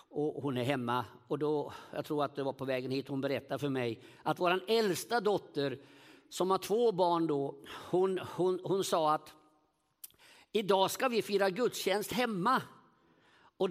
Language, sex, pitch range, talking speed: Swedish, male, 150-235 Hz, 170 wpm